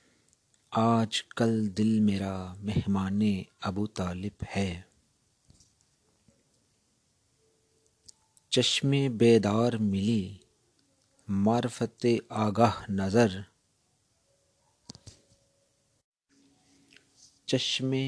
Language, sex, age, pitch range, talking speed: Urdu, male, 50-69, 100-120 Hz, 50 wpm